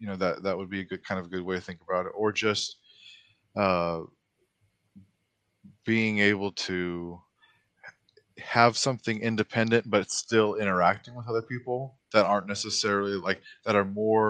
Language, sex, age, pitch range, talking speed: English, male, 20-39, 90-110 Hz, 160 wpm